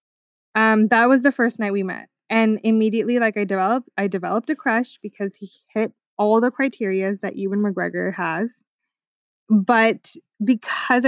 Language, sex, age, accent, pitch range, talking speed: English, female, 20-39, American, 205-245 Hz, 155 wpm